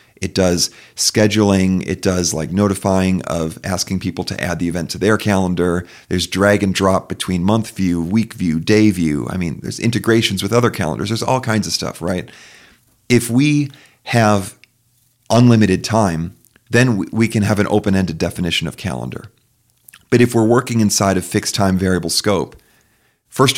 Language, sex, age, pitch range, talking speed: English, male, 40-59, 95-115 Hz, 170 wpm